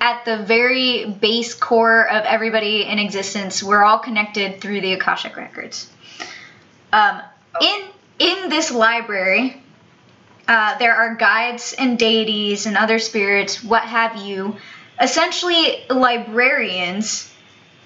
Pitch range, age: 215-255 Hz, 20-39